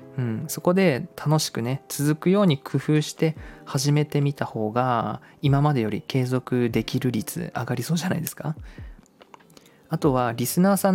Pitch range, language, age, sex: 115-155 Hz, Japanese, 20-39, male